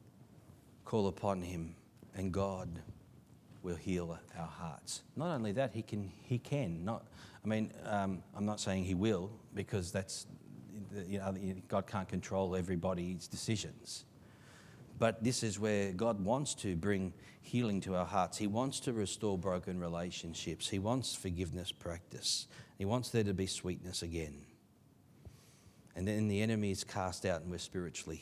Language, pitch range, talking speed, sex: English, 95-130 Hz, 155 wpm, male